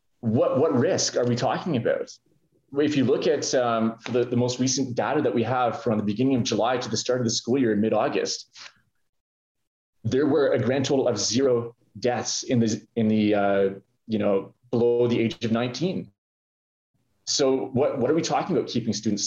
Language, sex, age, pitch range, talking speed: English, male, 20-39, 105-125 Hz, 195 wpm